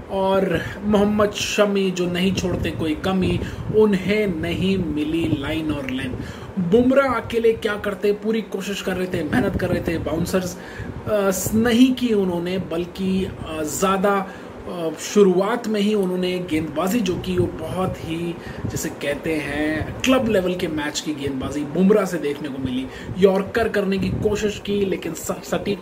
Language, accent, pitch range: Hindi, native, 150-205 Hz